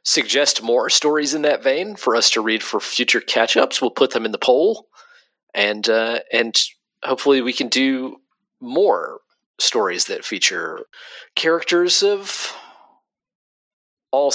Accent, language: American, English